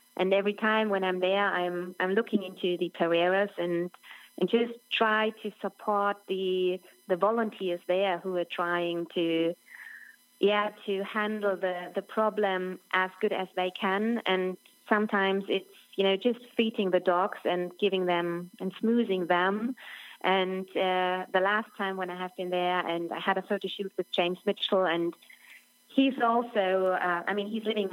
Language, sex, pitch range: English, female, 175-200 Hz